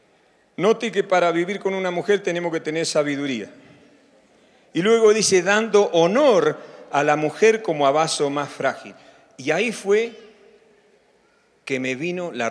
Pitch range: 150-210 Hz